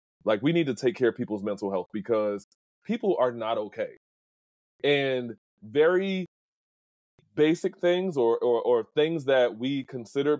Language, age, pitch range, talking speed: English, 20-39, 115-150 Hz, 150 wpm